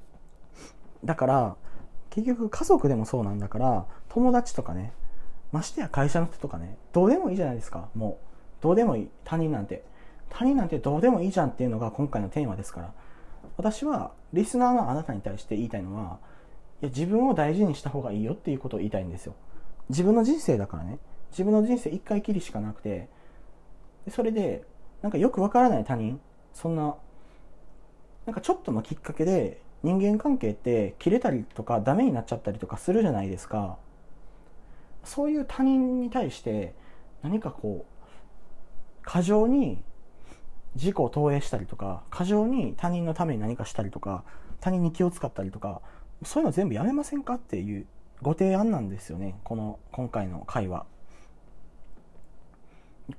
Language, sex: Japanese, male